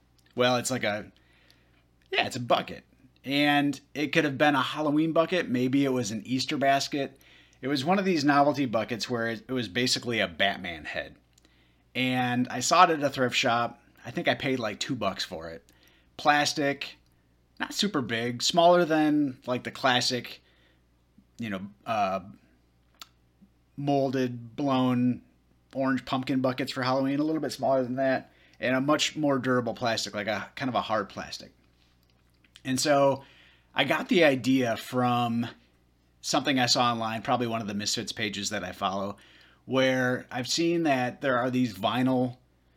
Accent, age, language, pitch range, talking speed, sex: American, 30-49, English, 90-130 Hz, 165 wpm, male